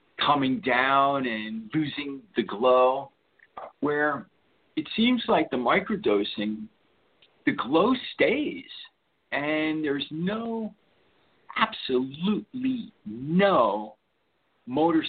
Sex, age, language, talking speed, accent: male, 50-69, English, 85 wpm, American